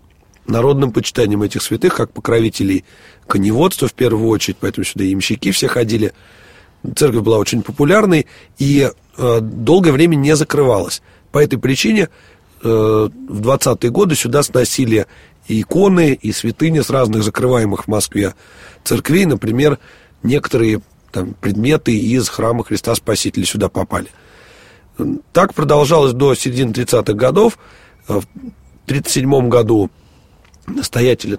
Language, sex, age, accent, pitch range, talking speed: Russian, male, 30-49, native, 110-140 Hz, 125 wpm